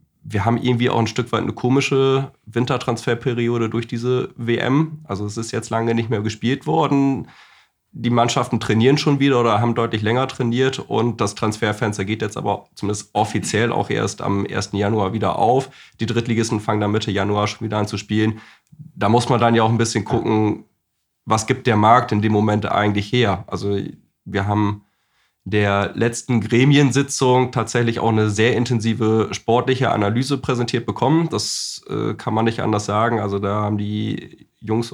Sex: male